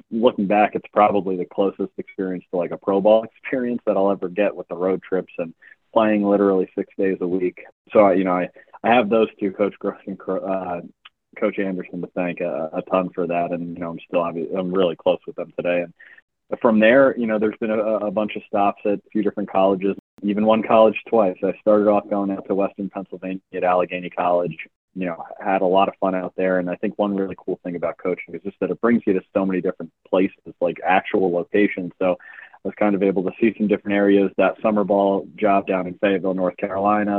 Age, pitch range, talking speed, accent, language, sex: 30-49, 95-105 Hz, 235 wpm, American, English, male